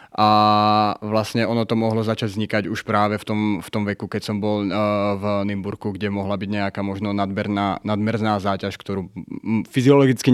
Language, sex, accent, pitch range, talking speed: Czech, male, native, 100-110 Hz, 175 wpm